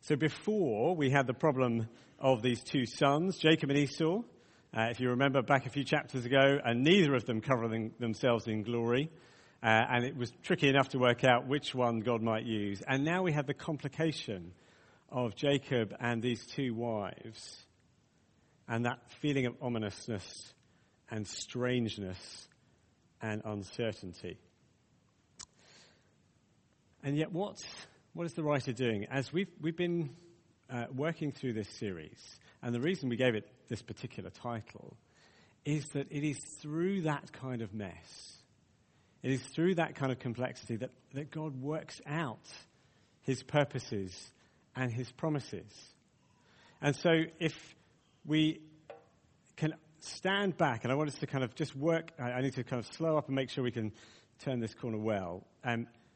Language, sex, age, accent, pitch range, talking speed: English, male, 50-69, British, 115-150 Hz, 160 wpm